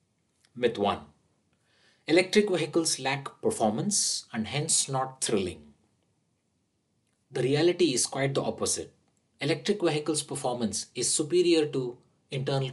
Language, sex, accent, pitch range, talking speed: English, male, Indian, 110-155 Hz, 110 wpm